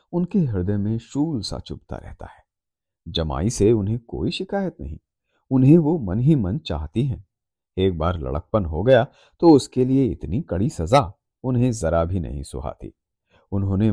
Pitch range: 85-130 Hz